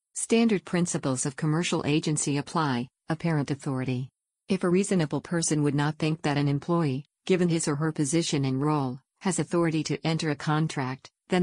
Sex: female